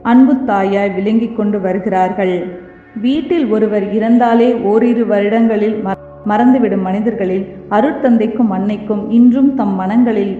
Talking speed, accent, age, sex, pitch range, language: 90 wpm, native, 30-49, female, 205-240 Hz, Tamil